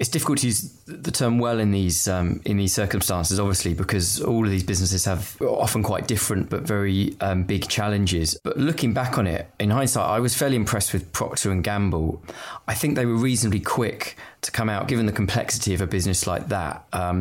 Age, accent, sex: 20-39, British, male